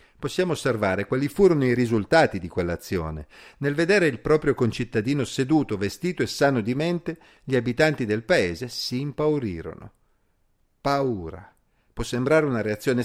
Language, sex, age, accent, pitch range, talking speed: Italian, male, 50-69, native, 105-140 Hz, 140 wpm